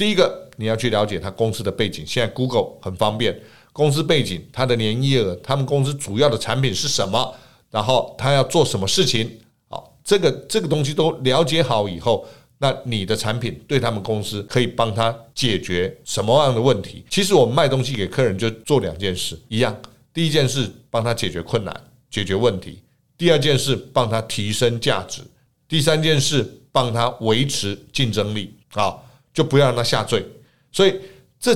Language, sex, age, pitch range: Chinese, male, 50-69, 105-140 Hz